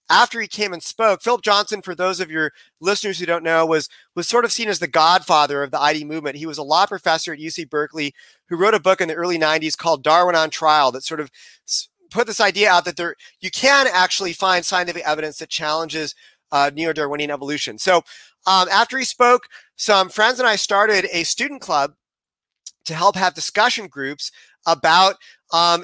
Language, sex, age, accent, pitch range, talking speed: English, male, 30-49, American, 160-215 Hz, 200 wpm